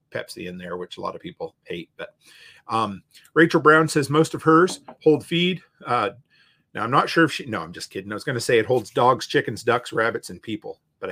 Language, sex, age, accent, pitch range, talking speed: English, male, 40-59, American, 125-190 Hz, 230 wpm